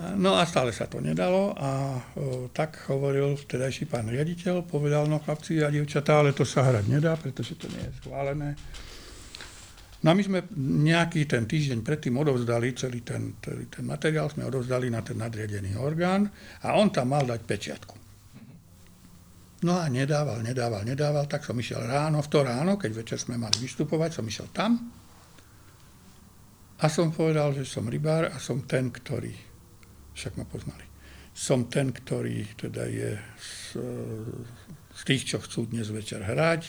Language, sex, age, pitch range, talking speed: Slovak, male, 60-79, 115-155 Hz, 165 wpm